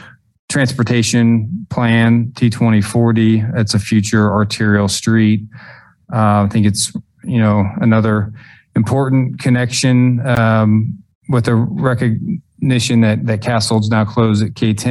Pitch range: 105-120 Hz